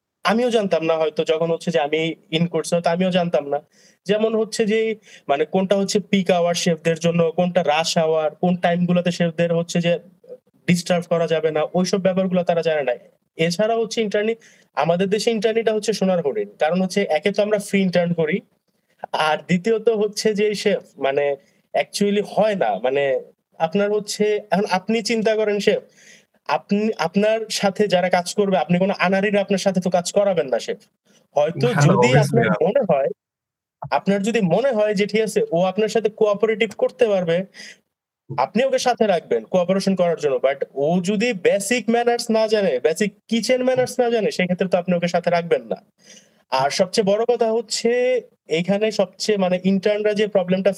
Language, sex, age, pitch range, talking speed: Bengali, male, 30-49, 175-220 Hz, 50 wpm